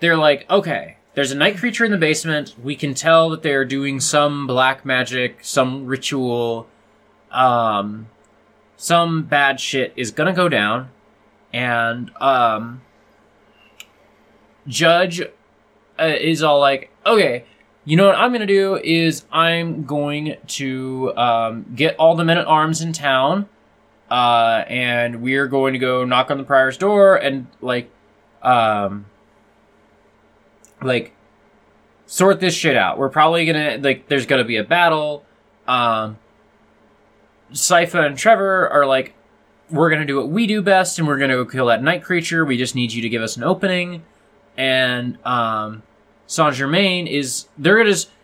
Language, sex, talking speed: English, male, 150 wpm